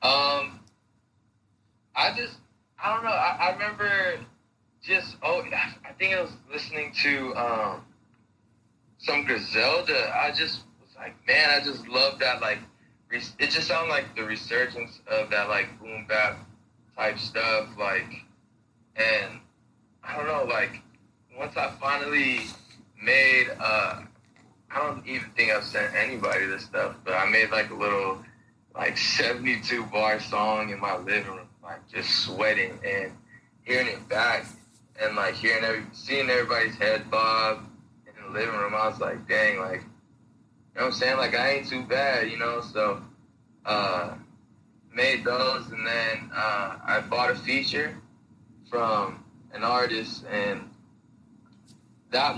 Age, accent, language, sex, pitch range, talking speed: 20-39, American, English, male, 110-140 Hz, 145 wpm